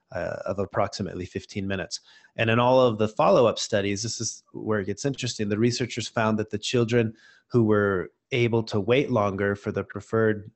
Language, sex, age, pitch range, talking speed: English, male, 30-49, 105-125 Hz, 190 wpm